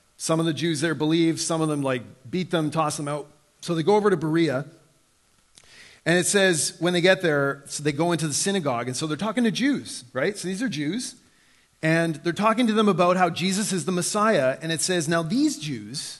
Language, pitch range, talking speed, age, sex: English, 135-205 Hz, 230 wpm, 40-59, male